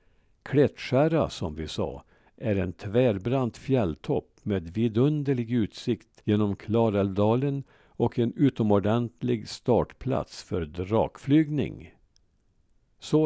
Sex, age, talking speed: male, 60-79, 90 wpm